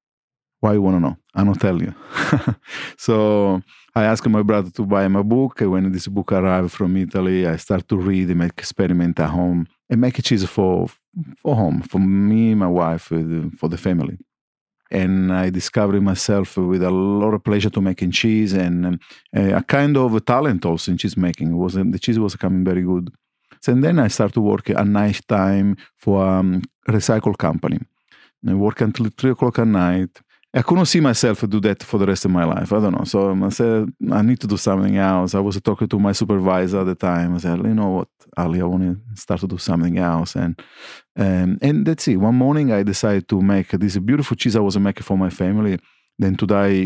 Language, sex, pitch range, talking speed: English, male, 95-110 Hz, 220 wpm